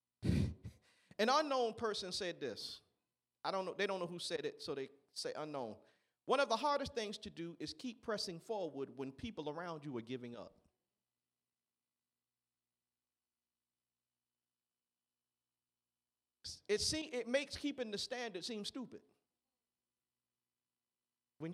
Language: English